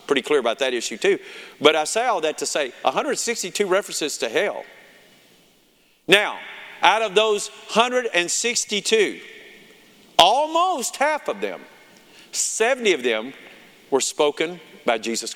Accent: American